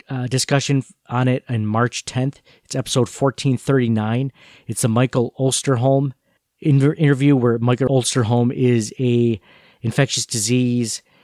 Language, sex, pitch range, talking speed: English, male, 120-140 Hz, 125 wpm